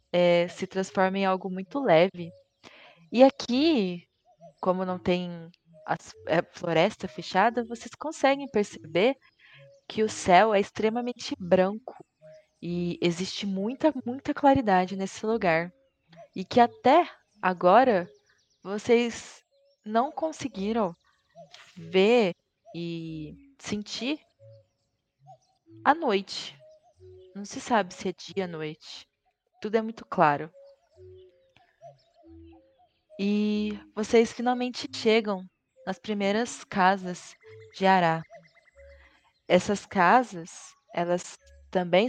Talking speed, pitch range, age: 95 wpm, 165-230 Hz, 20-39